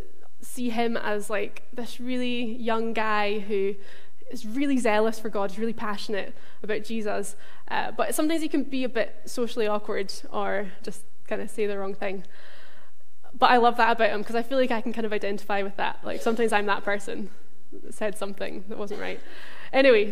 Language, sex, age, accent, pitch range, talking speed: English, female, 10-29, British, 215-255 Hz, 195 wpm